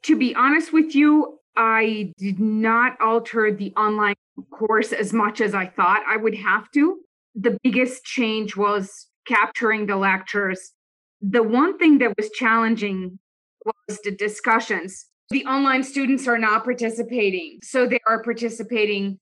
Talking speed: 145 wpm